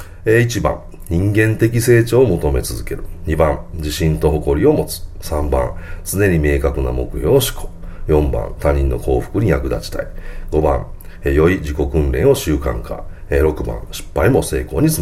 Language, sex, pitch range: Japanese, male, 70-85 Hz